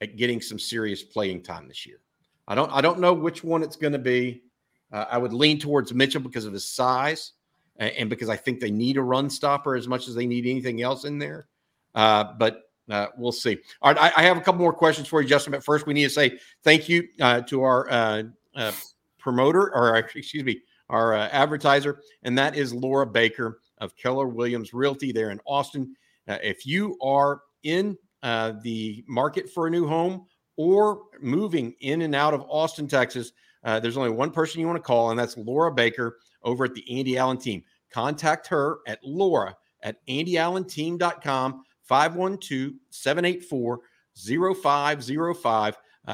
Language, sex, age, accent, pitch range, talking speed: English, male, 50-69, American, 120-155 Hz, 185 wpm